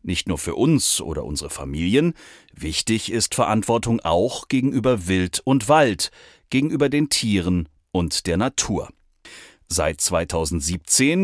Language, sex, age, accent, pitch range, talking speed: German, male, 40-59, German, 90-130 Hz, 125 wpm